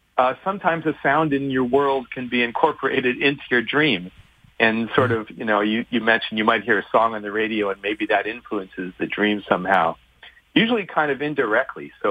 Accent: American